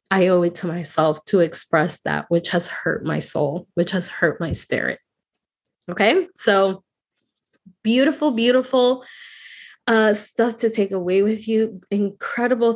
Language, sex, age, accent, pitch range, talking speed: English, female, 20-39, American, 175-225 Hz, 140 wpm